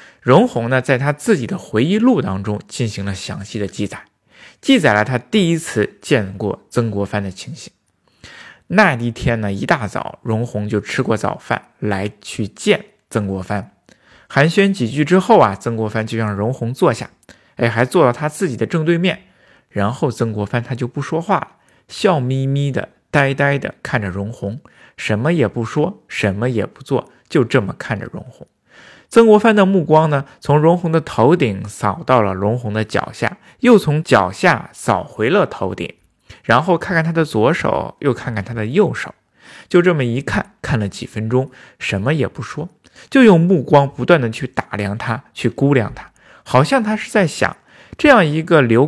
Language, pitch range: Chinese, 110-165 Hz